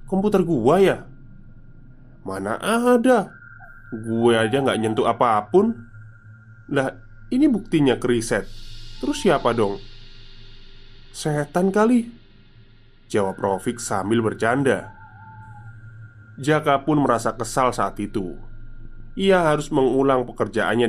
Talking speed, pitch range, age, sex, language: 95 wpm, 110-135 Hz, 20-39, male, Indonesian